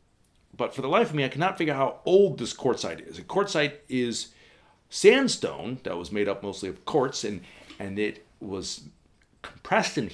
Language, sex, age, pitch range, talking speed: English, male, 40-59, 100-155 Hz, 190 wpm